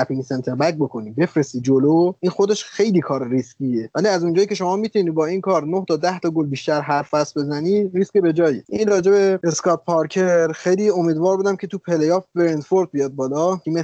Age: 20-39